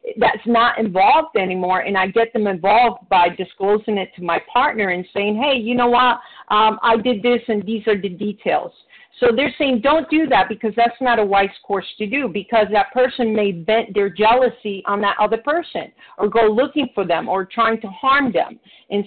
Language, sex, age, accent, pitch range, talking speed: English, female, 50-69, American, 205-250 Hz, 210 wpm